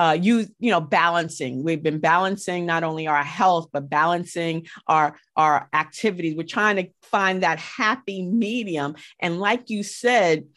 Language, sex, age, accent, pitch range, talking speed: English, female, 40-59, American, 155-200 Hz, 160 wpm